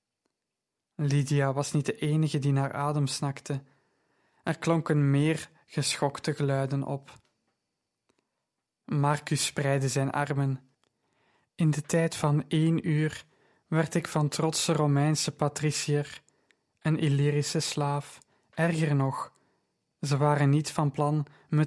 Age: 20-39